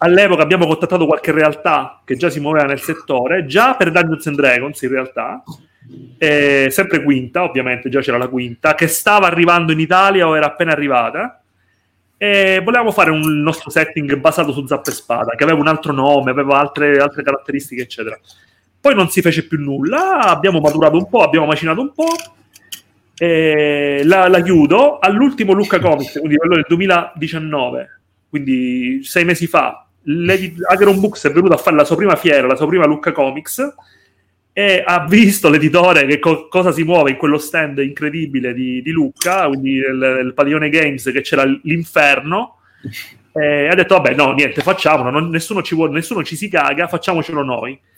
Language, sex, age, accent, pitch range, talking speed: Italian, male, 30-49, native, 145-180 Hz, 175 wpm